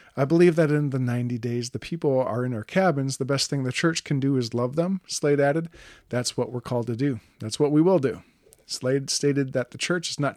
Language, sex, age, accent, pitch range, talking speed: English, male, 40-59, American, 125-155 Hz, 250 wpm